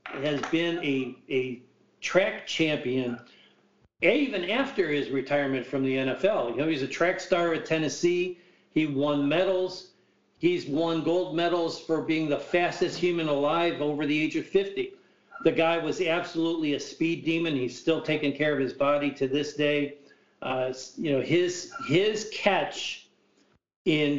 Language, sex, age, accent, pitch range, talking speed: English, male, 50-69, American, 140-175 Hz, 155 wpm